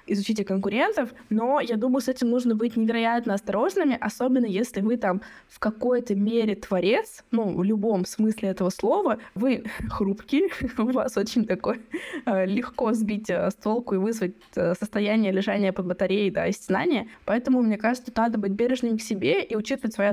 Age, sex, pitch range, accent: 20-39, female, 195-240 Hz, native